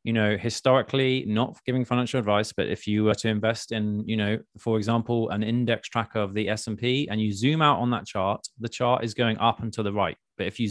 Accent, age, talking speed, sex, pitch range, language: British, 20-39, 240 wpm, male, 110-130 Hz, English